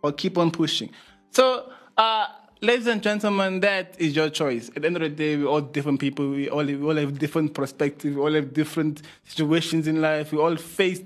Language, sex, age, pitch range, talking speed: English, male, 20-39, 140-165 Hz, 215 wpm